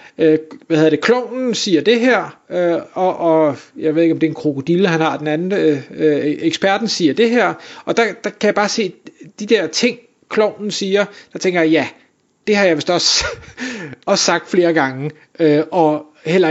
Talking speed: 195 wpm